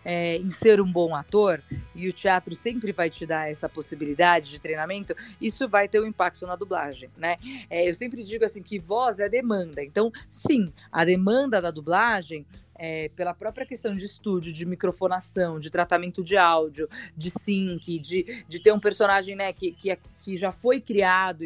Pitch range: 170-210 Hz